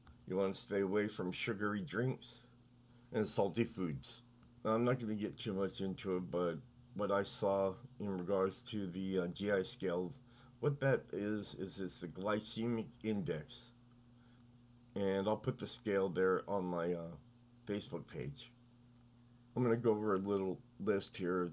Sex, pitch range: male, 95-120 Hz